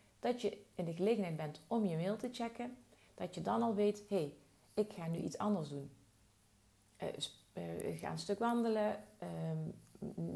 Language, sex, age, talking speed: Dutch, female, 40-59, 185 wpm